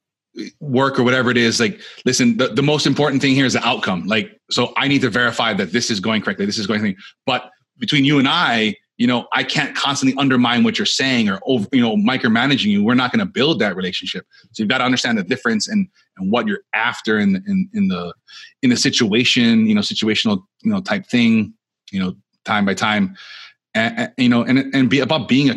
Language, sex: English, male